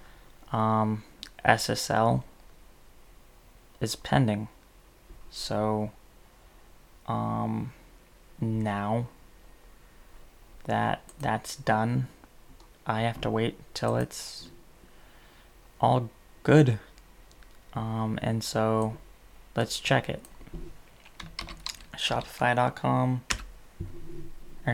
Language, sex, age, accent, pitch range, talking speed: English, male, 20-39, American, 110-125 Hz, 65 wpm